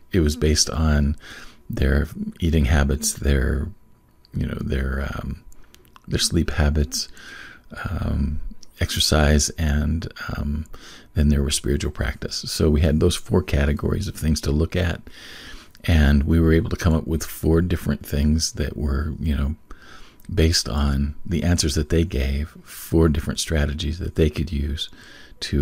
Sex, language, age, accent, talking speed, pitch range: male, English, 40-59, American, 150 wpm, 70-85 Hz